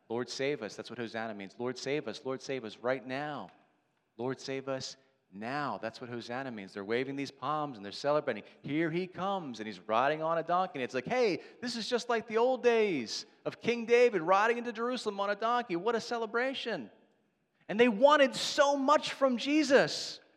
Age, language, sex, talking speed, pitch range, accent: 40-59, English, male, 205 wpm, 145-215 Hz, American